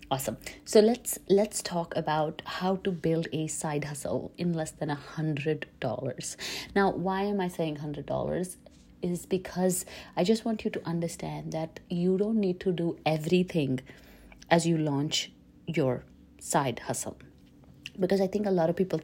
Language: English